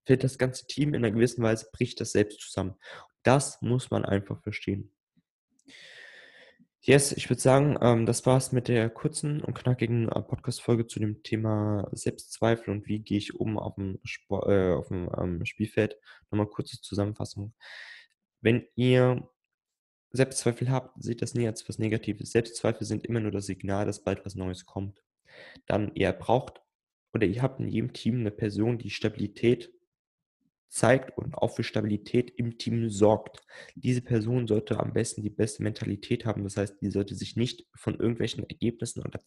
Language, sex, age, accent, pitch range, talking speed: German, male, 20-39, German, 105-125 Hz, 175 wpm